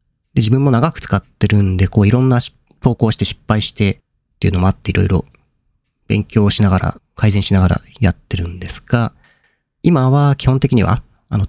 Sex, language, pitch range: male, Japanese, 95-125 Hz